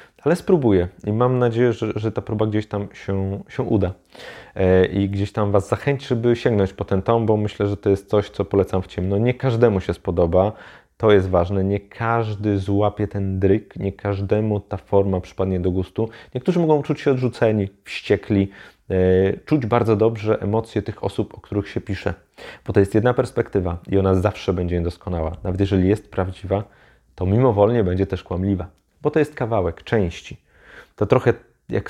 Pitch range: 95-110 Hz